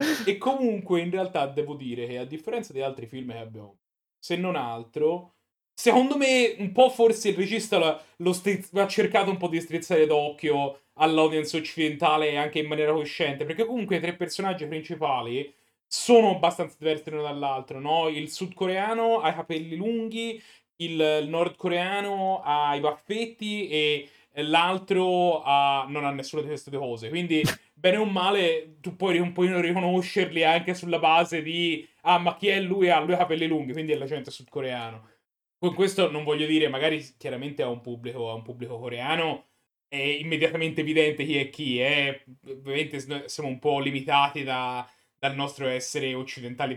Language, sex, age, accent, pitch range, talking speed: Italian, male, 30-49, native, 135-180 Hz, 170 wpm